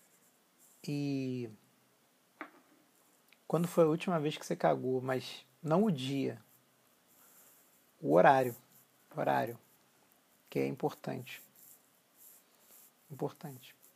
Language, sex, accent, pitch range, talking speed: Portuguese, male, Brazilian, 130-150 Hz, 85 wpm